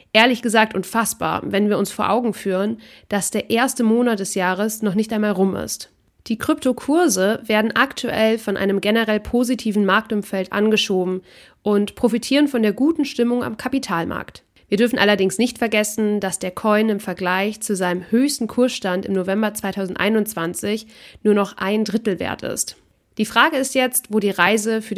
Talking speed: 165 wpm